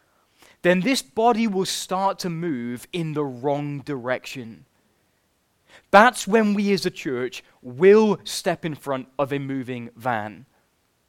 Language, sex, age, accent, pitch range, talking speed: English, male, 20-39, British, 135-180 Hz, 135 wpm